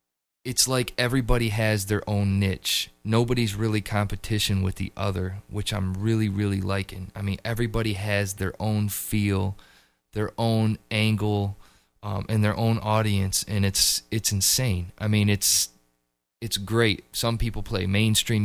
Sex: male